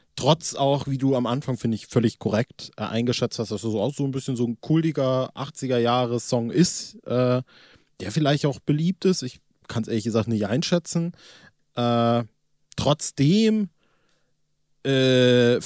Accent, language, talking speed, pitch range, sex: German, German, 165 wpm, 110-150 Hz, male